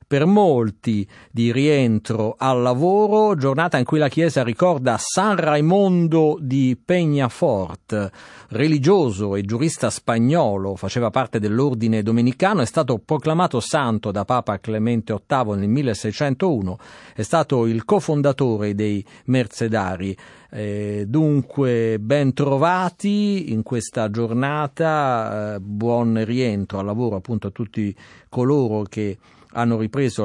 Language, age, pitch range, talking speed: Italian, 50-69, 110-155 Hz, 115 wpm